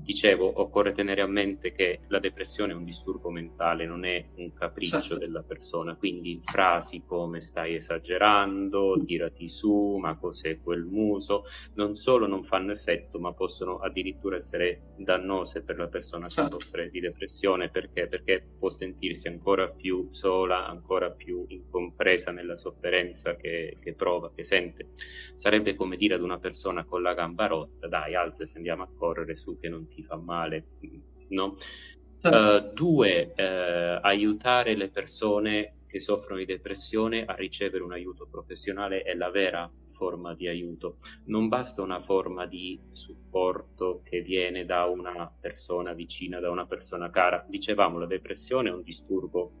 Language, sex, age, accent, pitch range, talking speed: Italian, male, 30-49, native, 85-100 Hz, 155 wpm